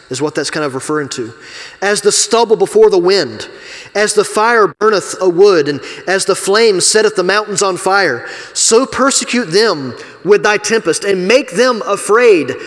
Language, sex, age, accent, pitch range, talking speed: English, male, 30-49, American, 130-200 Hz, 180 wpm